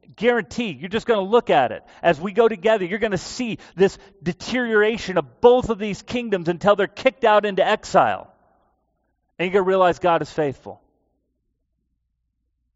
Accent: American